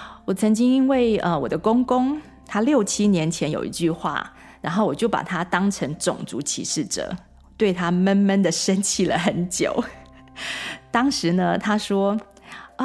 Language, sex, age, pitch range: Chinese, female, 30-49, 170-220 Hz